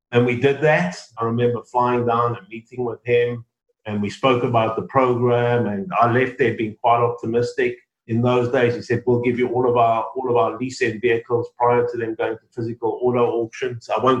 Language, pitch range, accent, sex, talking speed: English, 115-130 Hz, British, male, 210 wpm